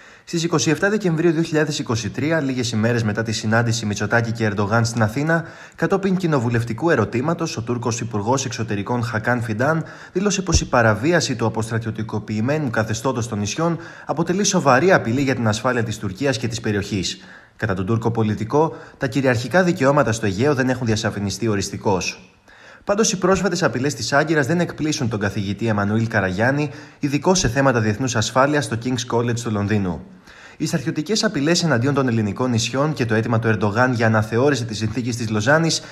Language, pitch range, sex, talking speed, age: Greek, 110-150 Hz, male, 155 wpm, 20-39